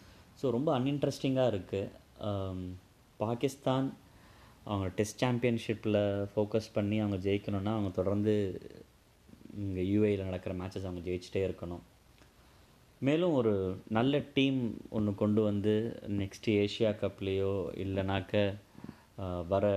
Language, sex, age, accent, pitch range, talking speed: Tamil, male, 20-39, native, 95-110 Hz, 105 wpm